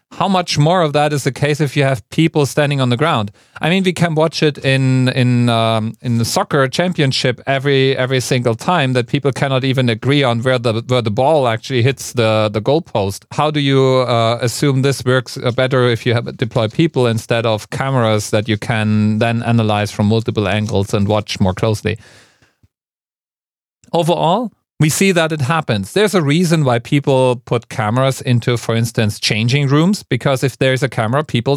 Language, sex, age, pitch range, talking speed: English, male, 40-59, 115-150 Hz, 190 wpm